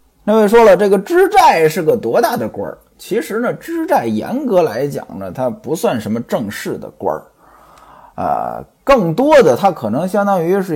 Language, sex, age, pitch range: Chinese, male, 20-39, 140-235 Hz